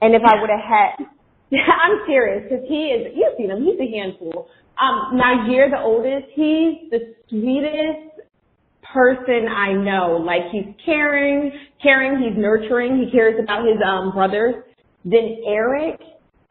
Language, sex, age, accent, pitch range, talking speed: English, female, 30-49, American, 195-270 Hz, 150 wpm